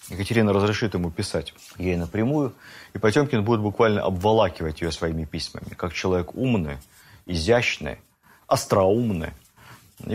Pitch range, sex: 90-115 Hz, male